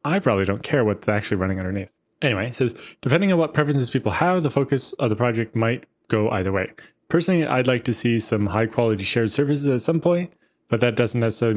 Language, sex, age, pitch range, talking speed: English, male, 20-39, 105-130 Hz, 230 wpm